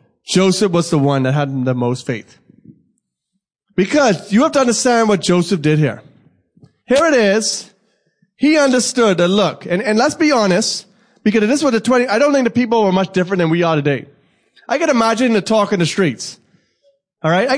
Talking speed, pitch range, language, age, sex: 200 wpm, 155-215 Hz, English, 20-39, male